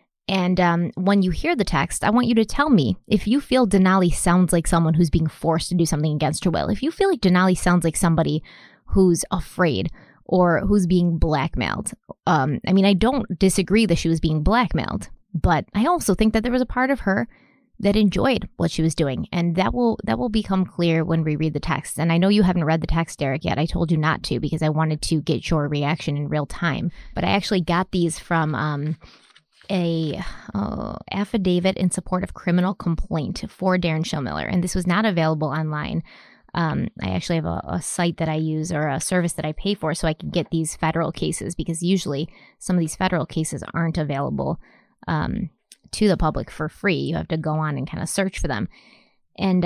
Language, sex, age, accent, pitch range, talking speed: English, female, 20-39, American, 160-195 Hz, 220 wpm